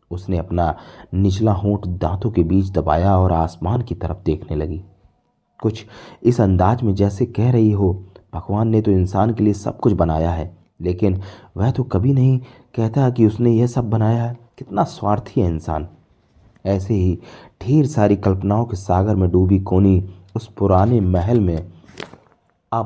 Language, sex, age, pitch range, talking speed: Hindi, male, 30-49, 90-115 Hz, 165 wpm